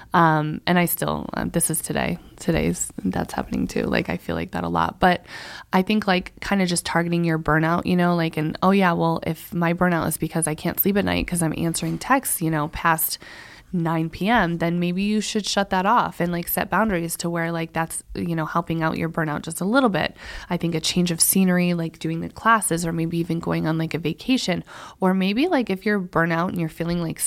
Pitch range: 160-185 Hz